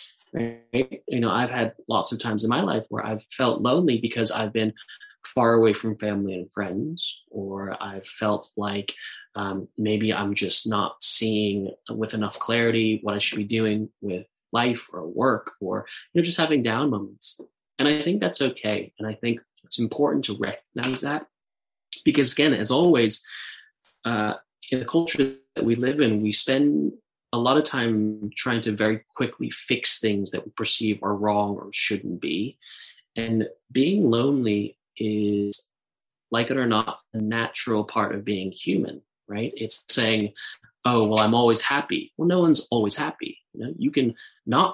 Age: 20-39